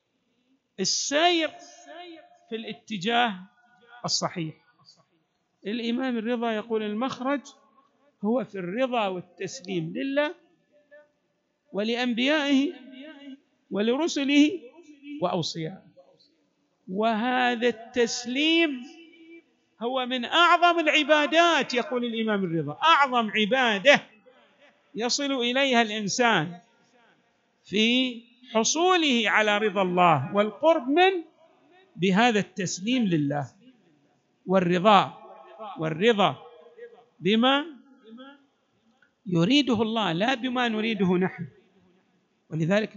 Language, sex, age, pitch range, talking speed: Arabic, male, 50-69, 200-270 Hz, 70 wpm